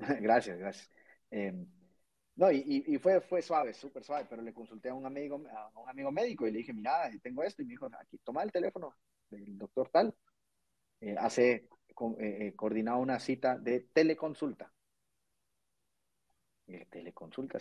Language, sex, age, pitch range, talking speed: Spanish, male, 30-49, 100-150 Hz, 155 wpm